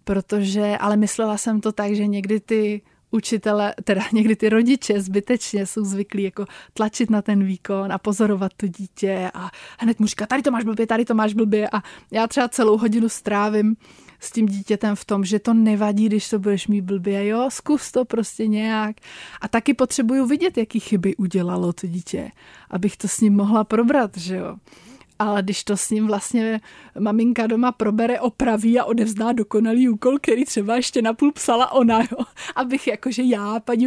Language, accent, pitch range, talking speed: Czech, native, 205-235 Hz, 180 wpm